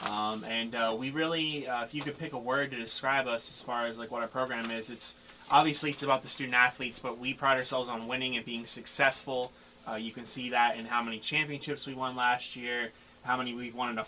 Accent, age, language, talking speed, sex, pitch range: American, 20-39, English, 245 wpm, male, 115-130 Hz